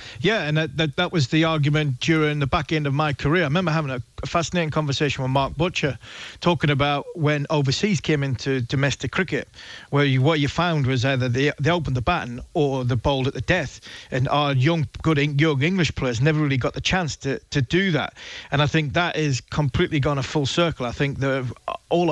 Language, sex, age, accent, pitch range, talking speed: English, male, 40-59, British, 130-155 Hz, 220 wpm